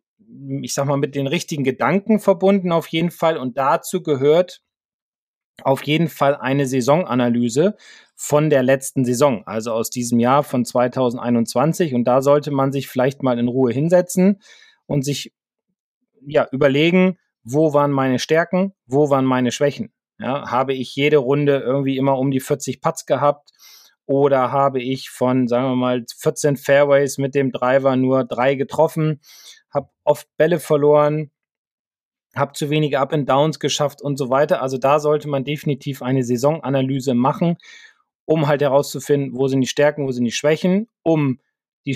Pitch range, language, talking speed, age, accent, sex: 130-155 Hz, German, 160 wpm, 30-49, German, male